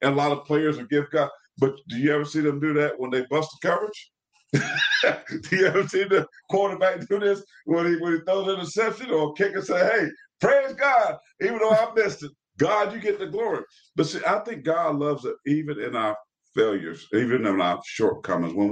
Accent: American